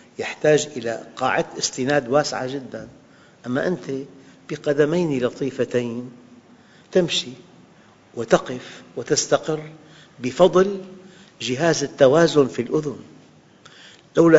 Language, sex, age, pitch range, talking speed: Arabic, male, 50-69, 125-165 Hz, 80 wpm